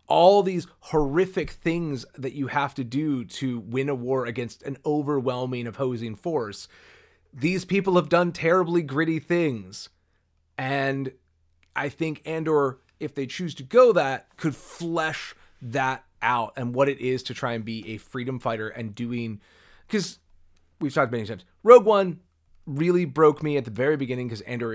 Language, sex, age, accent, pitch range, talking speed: English, male, 30-49, American, 115-160 Hz, 165 wpm